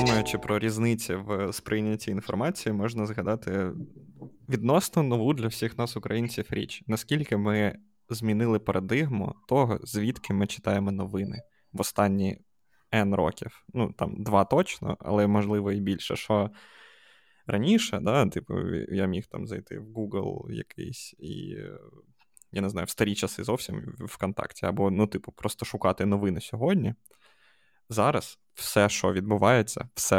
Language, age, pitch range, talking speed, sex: Ukrainian, 20-39, 100-115 Hz, 135 wpm, male